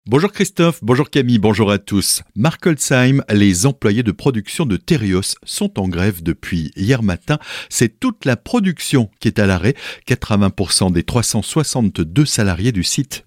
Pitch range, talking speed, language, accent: 95-145 Hz, 160 wpm, French, French